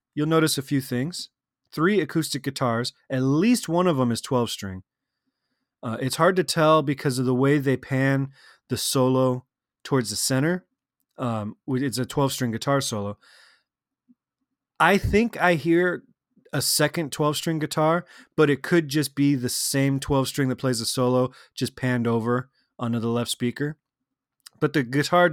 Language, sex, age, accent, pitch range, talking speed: English, male, 30-49, American, 115-150 Hz, 155 wpm